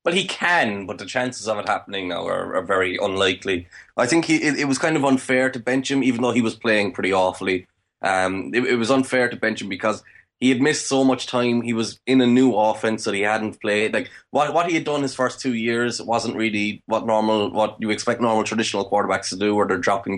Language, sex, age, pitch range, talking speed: English, male, 20-39, 105-125 Hz, 250 wpm